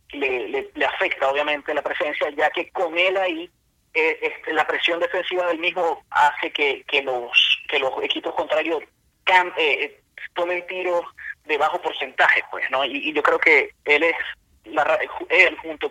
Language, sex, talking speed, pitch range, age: Spanish, male, 175 wpm, 145-185 Hz, 30-49